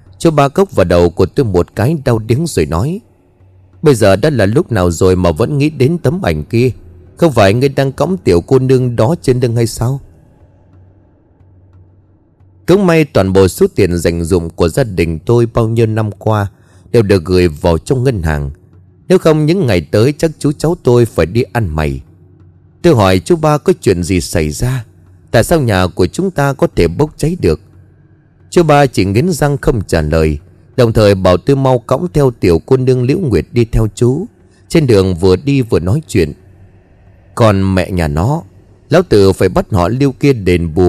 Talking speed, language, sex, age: 205 wpm, Vietnamese, male, 30-49